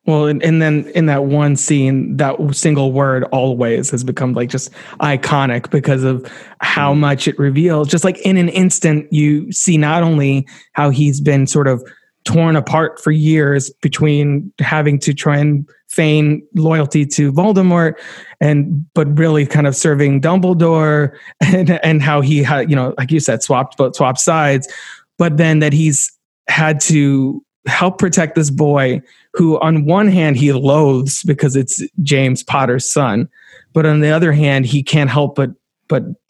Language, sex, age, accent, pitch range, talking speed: English, male, 20-39, American, 140-160 Hz, 170 wpm